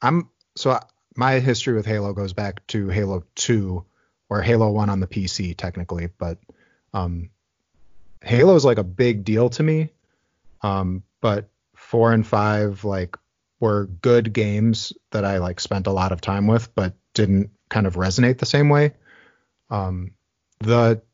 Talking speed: 160 wpm